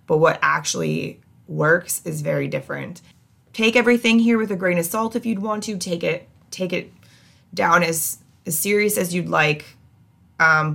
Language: English